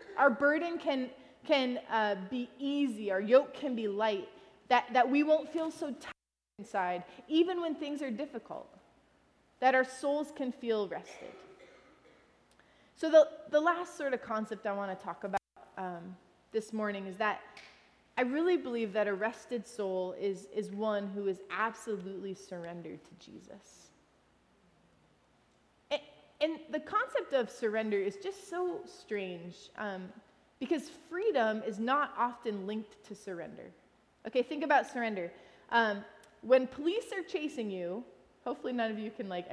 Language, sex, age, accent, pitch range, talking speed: English, female, 30-49, American, 210-300 Hz, 150 wpm